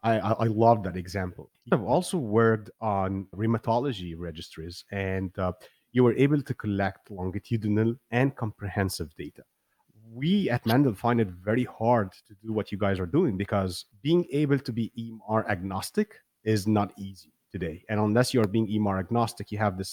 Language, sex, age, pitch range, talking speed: English, male, 30-49, 95-115 Hz, 170 wpm